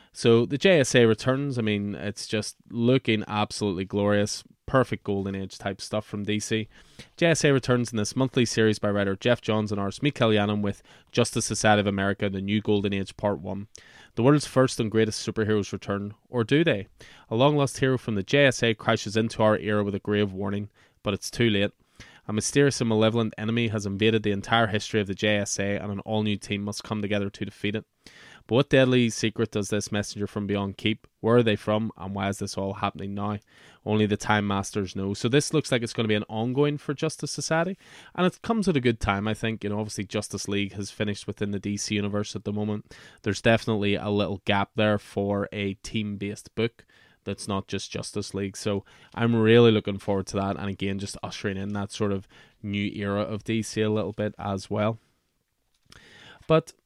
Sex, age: male, 20-39